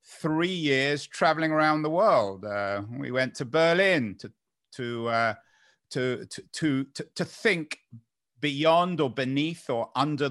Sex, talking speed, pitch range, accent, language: male, 145 wpm, 125-160 Hz, British, English